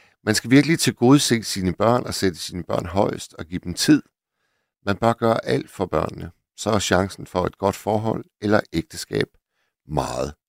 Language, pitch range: Danish, 95-120 Hz